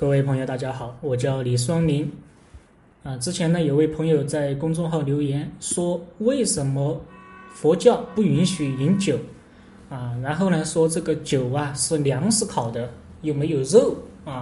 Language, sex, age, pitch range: Chinese, male, 20-39, 130-180 Hz